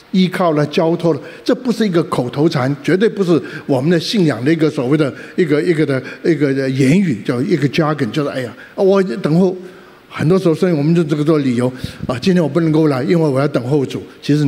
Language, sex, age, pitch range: Chinese, male, 50-69, 135-175 Hz